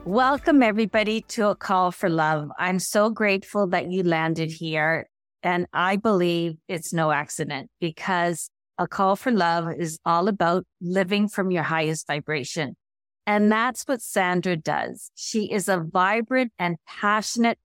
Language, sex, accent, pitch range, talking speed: English, female, American, 175-230 Hz, 150 wpm